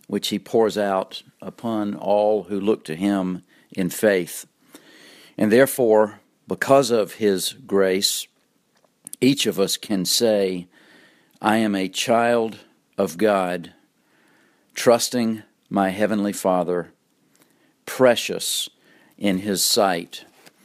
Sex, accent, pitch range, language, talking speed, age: male, American, 95-110 Hz, English, 110 wpm, 50-69